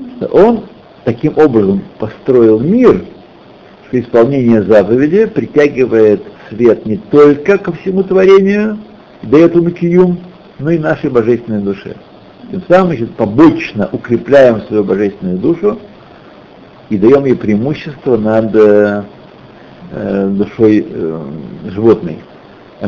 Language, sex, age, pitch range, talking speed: Russian, male, 60-79, 120-195 Hz, 100 wpm